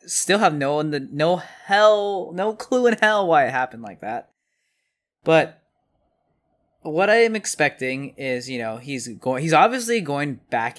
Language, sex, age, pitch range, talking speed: English, male, 20-39, 130-175 Hz, 155 wpm